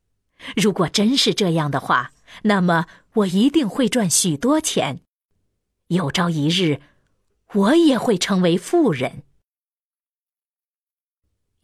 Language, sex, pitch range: Chinese, female, 160-225 Hz